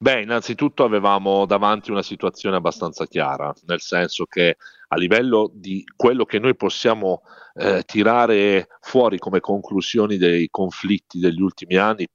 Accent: native